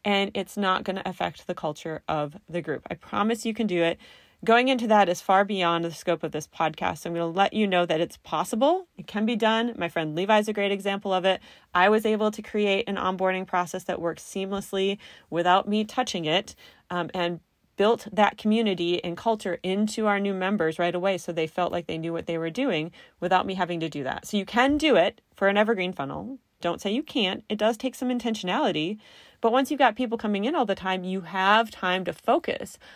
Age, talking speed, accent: 30-49, 230 wpm, American